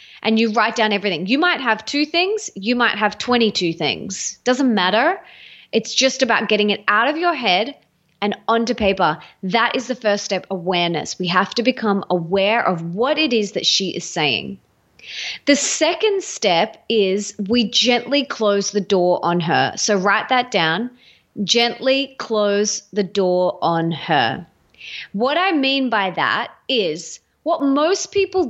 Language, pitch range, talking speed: English, 200-265 Hz, 165 wpm